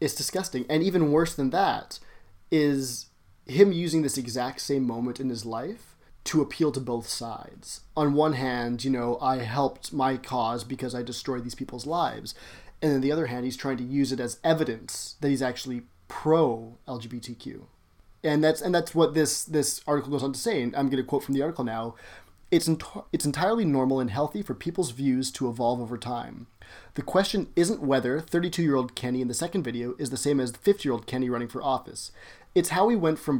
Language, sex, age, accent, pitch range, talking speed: English, male, 20-39, American, 125-150 Hz, 205 wpm